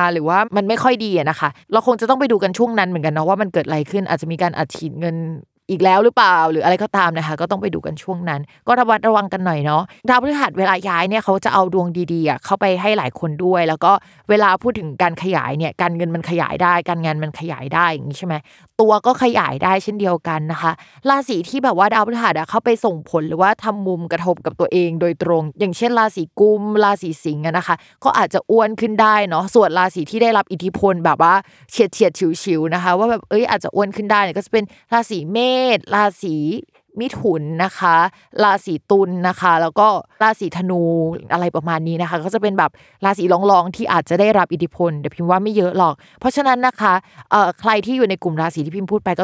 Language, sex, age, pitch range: Thai, female, 20-39, 170-210 Hz